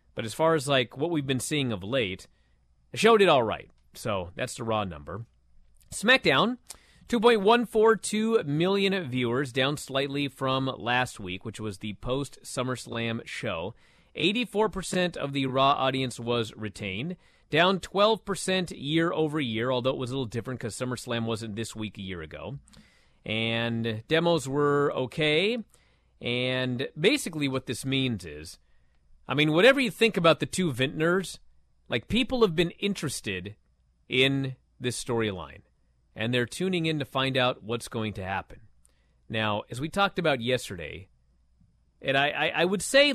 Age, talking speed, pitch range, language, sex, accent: 30-49, 155 wpm, 105-165 Hz, English, male, American